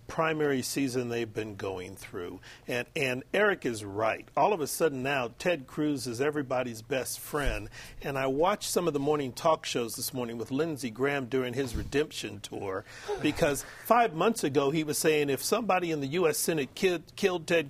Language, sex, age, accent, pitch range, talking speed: English, male, 40-59, American, 125-165 Hz, 185 wpm